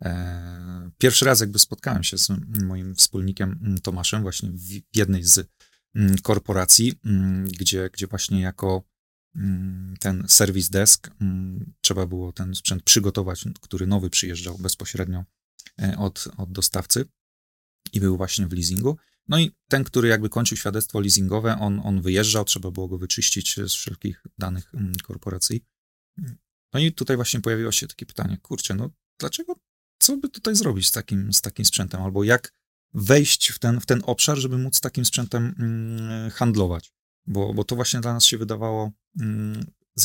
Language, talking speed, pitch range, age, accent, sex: Polish, 155 wpm, 95-120 Hz, 30-49, native, male